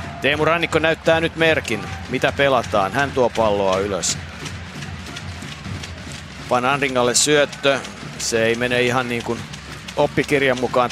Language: Finnish